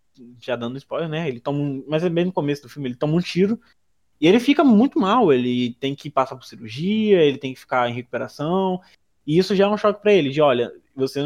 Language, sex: Portuguese, male